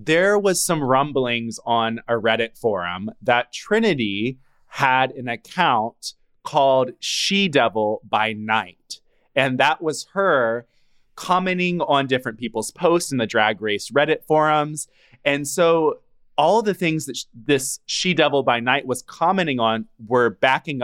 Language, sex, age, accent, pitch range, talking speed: English, male, 20-39, American, 115-170 Hz, 140 wpm